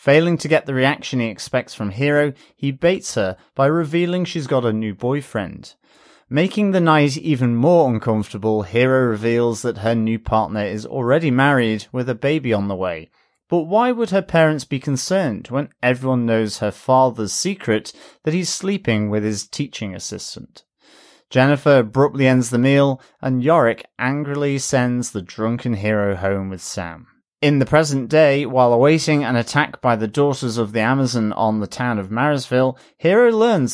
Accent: British